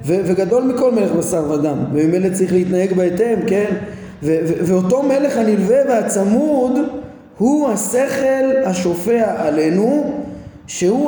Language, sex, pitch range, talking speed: Hebrew, male, 180-240 Hz, 125 wpm